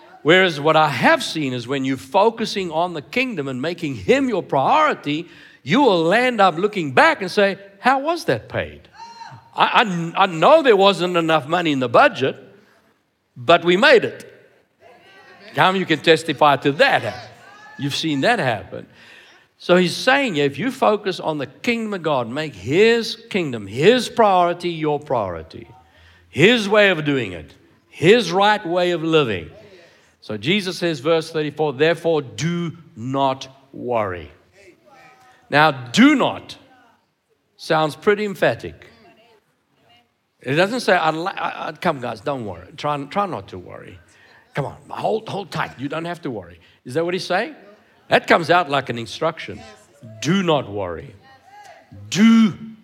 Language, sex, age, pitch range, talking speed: English, male, 60-79, 145-200 Hz, 150 wpm